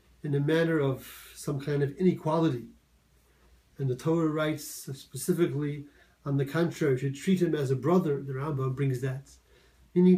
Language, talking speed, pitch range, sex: English, 160 wpm, 125-150 Hz, male